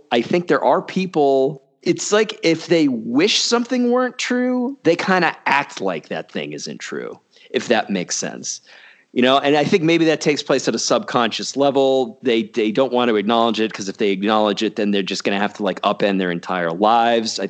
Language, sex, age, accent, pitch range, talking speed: English, male, 40-59, American, 110-165 Hz, 220 wpm